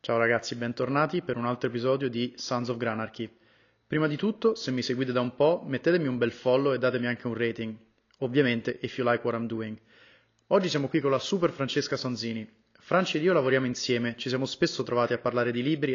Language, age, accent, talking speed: Italian, 30-49, native, 215 wpm